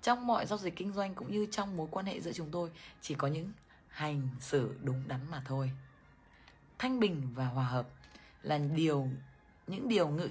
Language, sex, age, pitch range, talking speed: Vietnamese, female, 20-39, 135-200 Hz, 200 wpm